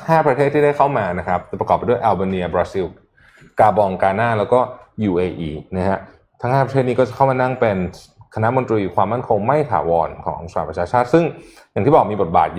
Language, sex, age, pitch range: Thai, male, 20-39, 95-130 Hz